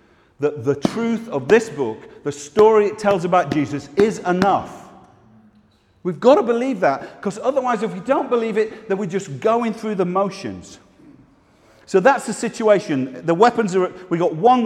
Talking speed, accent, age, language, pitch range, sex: 175 wpm, British, 40-59, English, 130-185 Hz, male